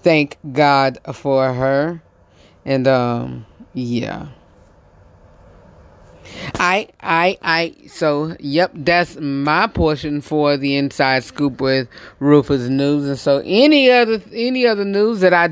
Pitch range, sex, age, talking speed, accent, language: 135-170 Hz, female, 30-49, 120 wpm, American, English